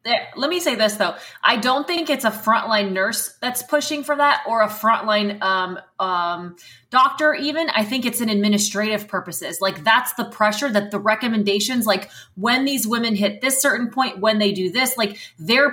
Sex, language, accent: female, English, American